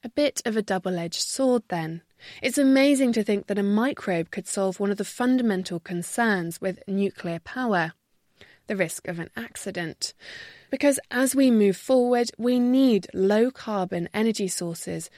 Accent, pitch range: British, 190-255 Hz